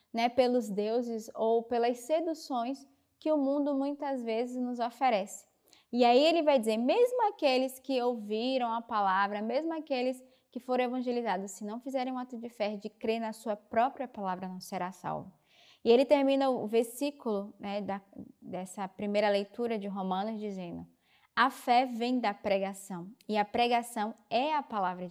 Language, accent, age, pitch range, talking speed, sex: Portuguese, Brazilian, 10-29, 220-270 Hz, 165 wpm, female